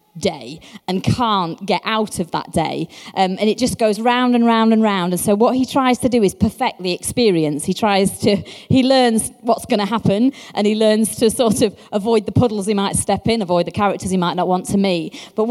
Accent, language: British, English